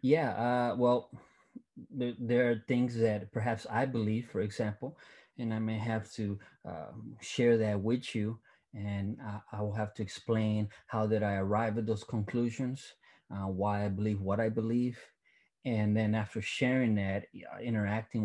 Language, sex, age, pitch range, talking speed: English, male, 30-49, 100-115 Hz, 165 wpm